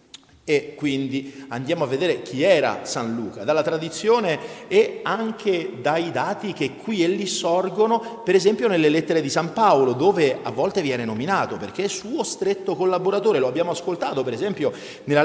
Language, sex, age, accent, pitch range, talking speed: Italian, male, 40-59, native, 145-215 Hz, 170 wpm